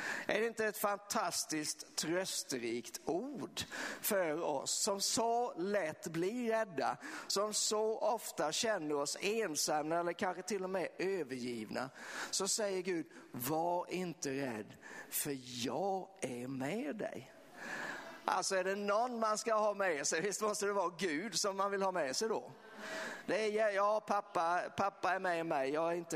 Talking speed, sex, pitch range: 150 wpm, male, 150-215 Hz